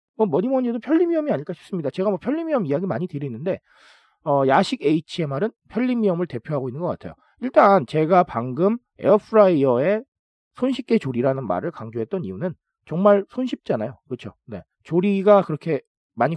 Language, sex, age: Korean, male, 40-59